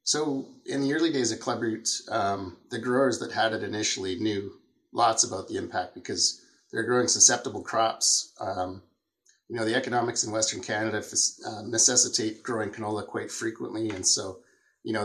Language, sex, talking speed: English, male, 175 wpm